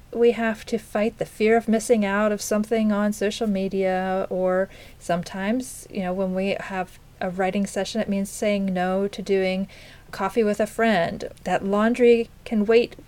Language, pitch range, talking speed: English, 190-230 Hz, 175 wpm